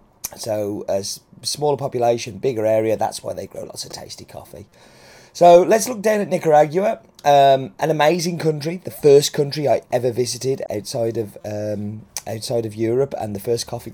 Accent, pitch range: British, 115-155 Hz